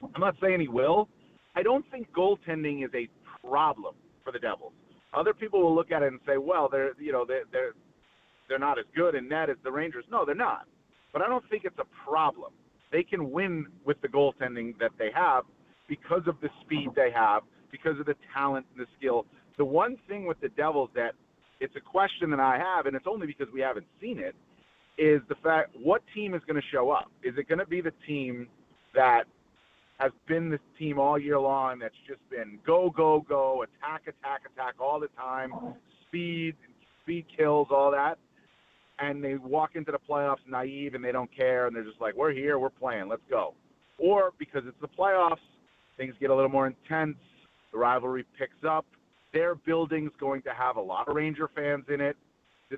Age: 40-59